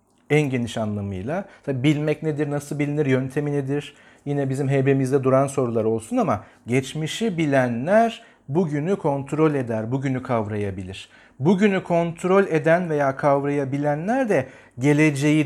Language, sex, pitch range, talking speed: Turkish, male, 130-155 Hz, 120 wpm